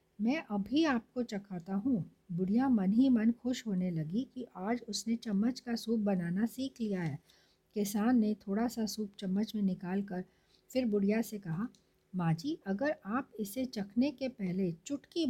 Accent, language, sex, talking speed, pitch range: native, Hindi, female, 165 wpm, 190-240 Hz